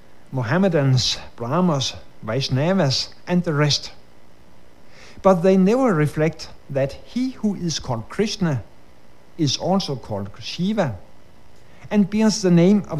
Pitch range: 115-180 Hz